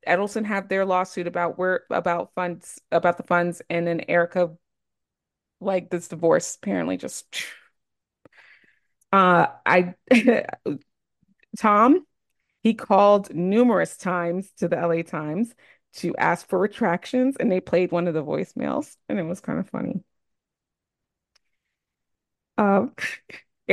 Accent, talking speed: American, 120 wpm